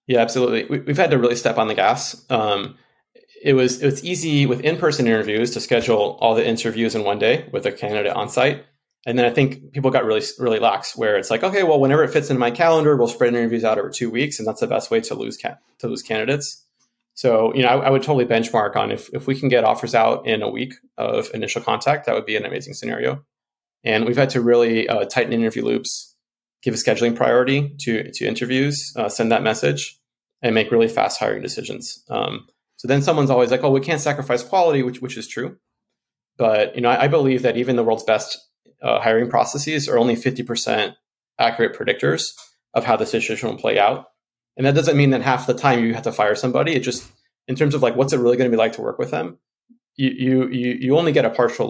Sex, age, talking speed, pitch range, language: male, 20-39, 235 wpm, 120-145 Hz, English